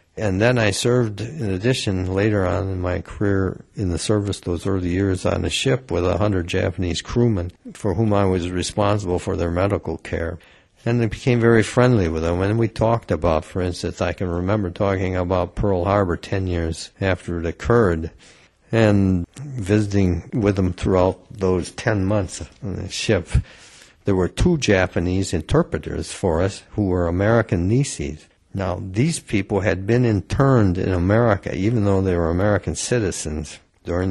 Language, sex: English, male